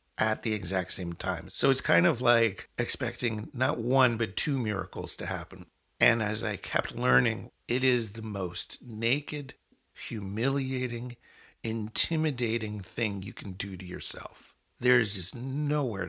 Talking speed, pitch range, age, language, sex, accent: 145 wpm, 95-120 Hz, 50-69, English, male, American